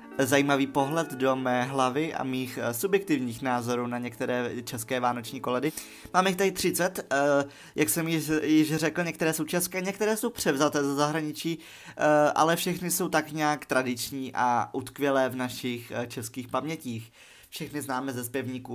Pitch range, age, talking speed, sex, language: 125-155 Hz, 20-39, 155 wpm, male, Czech